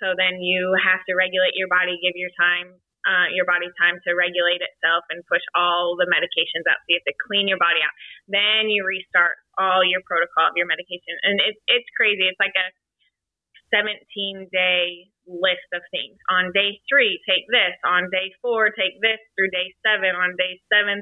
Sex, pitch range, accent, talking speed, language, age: female, 180-200 Hz, American, 195 wpm, English, 20-39